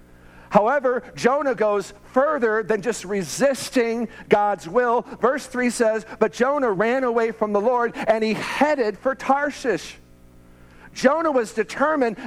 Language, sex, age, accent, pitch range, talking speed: English, male, 50-69, American, 170-235 Hz, 130 wpm